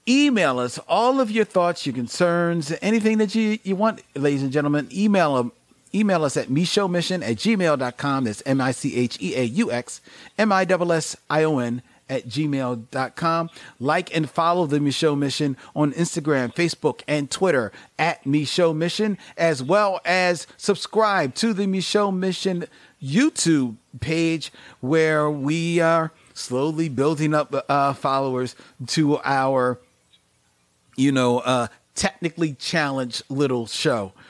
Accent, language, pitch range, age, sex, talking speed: American, English, 130-175 Hz, 40-59, male, 120 wpm